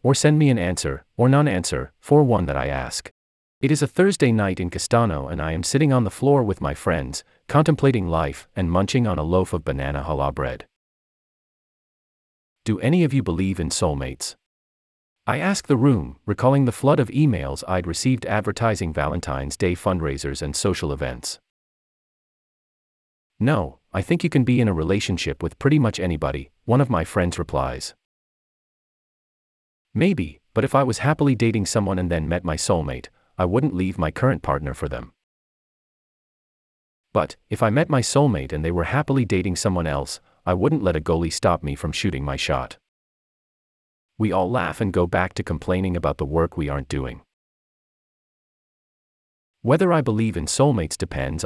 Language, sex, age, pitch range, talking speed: English, male, 30-49, 75-120 Hz, 175 wpm